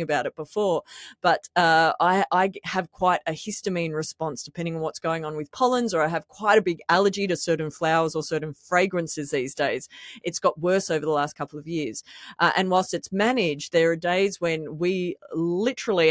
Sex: female